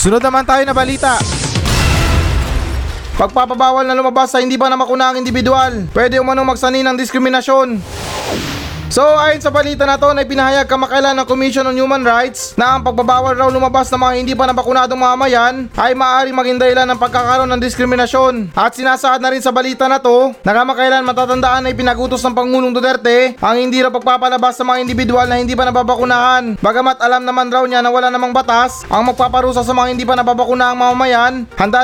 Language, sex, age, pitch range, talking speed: Filipino, male, 20-39, 245-265 Hz, 185 wpm